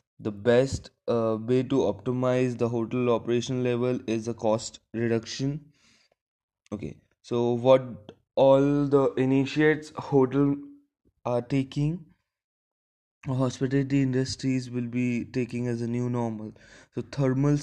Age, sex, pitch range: 20-39, male, 115-130 Hz